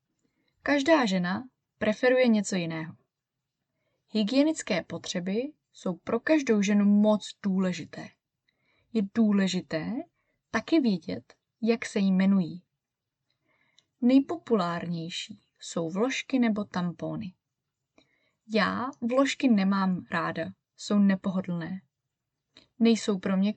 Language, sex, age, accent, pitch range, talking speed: Czech, female, 20-39, native, 175-235 Hz, 90 wpm